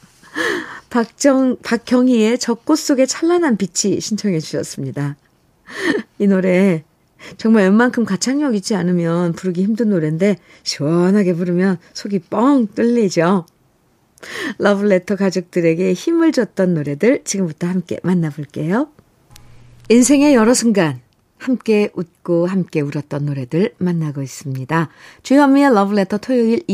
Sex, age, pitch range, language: female, 50-69, 165-235 Hz, Korean